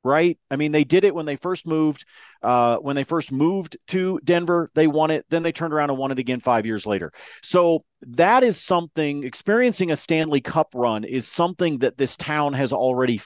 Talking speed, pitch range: 215 wpm, 120-165 Hz